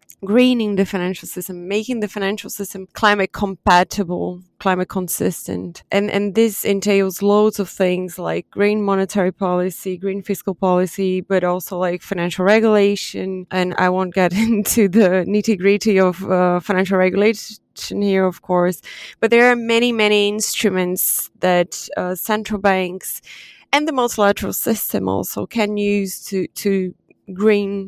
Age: 20-39